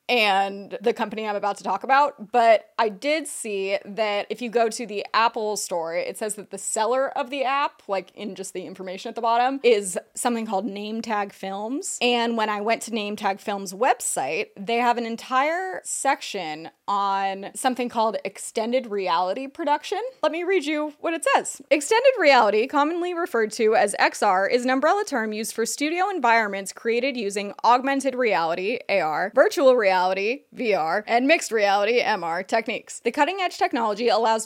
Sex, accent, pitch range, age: female, American, 210-280 Hz, 20-39